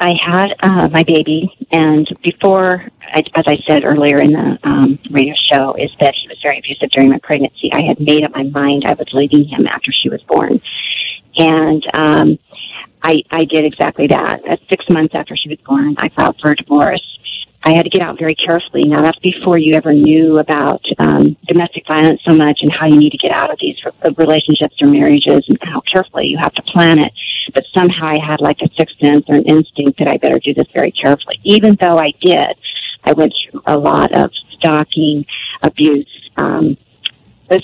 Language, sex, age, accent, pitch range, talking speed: English, female, 40-59, American, 150-175 Hz, 200 wpm